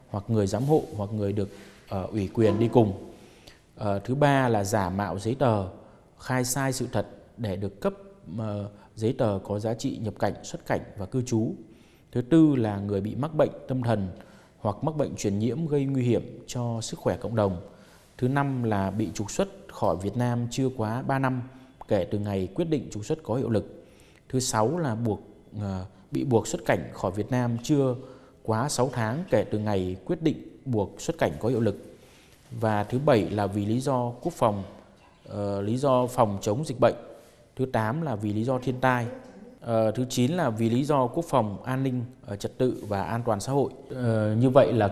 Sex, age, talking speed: male, 20-39, 205 wpm